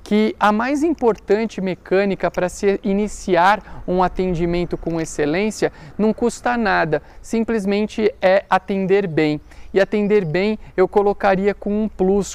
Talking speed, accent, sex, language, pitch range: 130 wpm, Brazilian, male, Portuguese, 180-210 Hz